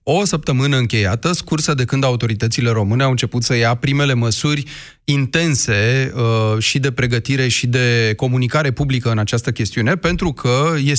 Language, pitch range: Romanian, 110-135 Hz